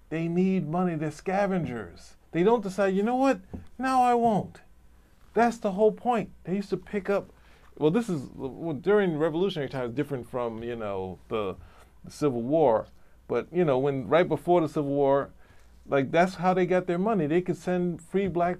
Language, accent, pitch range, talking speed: English, American, 110-175 Hz, 185 wpm